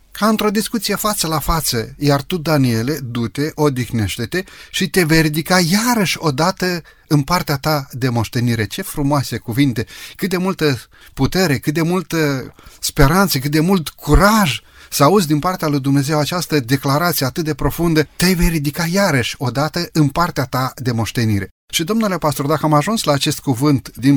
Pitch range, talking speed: 130-170 Hz, 170 wpm